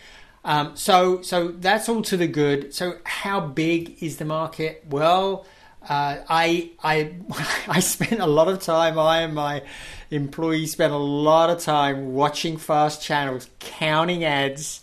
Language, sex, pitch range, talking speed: English, male, 135-165 Hz, 155 wpm